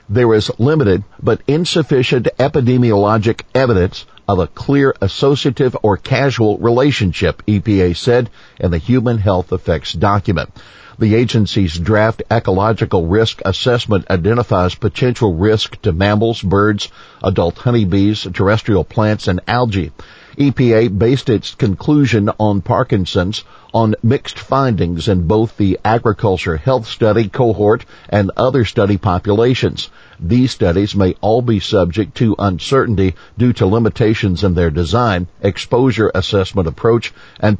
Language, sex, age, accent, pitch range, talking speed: English, male, 50-69, American, 90-115 Hz, 125 wpm